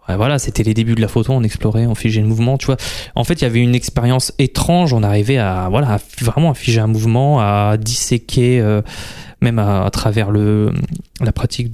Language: French